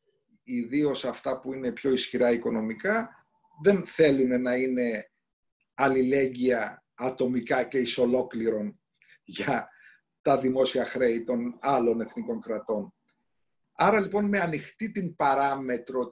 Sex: male